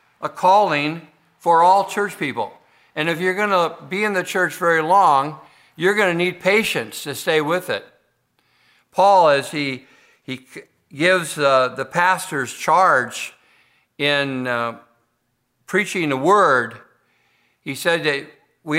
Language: English